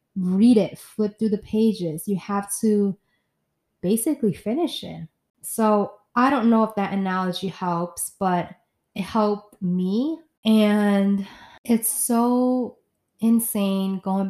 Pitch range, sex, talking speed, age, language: 185-205 Hz, female, 120 wpm, 20-39, English